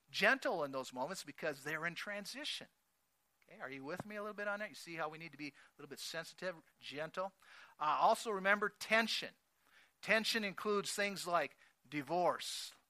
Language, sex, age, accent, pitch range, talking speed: English, male, 50-69, American, 150-215 Hz, 180 wpm